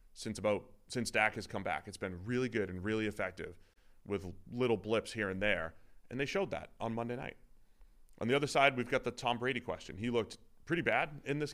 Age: 30-49